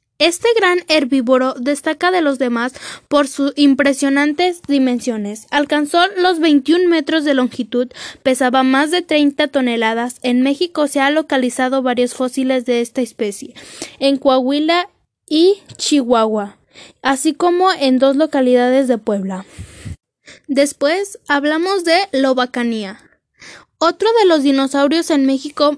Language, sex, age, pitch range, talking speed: Spanish, female, 10-29, 255-315 Hz, 125 wpm